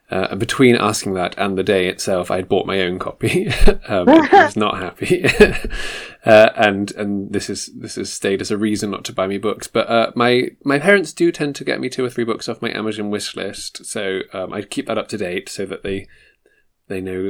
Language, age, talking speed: English, 20-39, 225 wpm